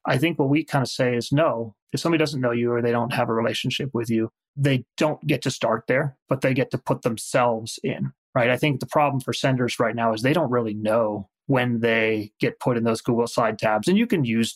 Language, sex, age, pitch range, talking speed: English, male, 30-49, 115-140 Hz, 255 wpm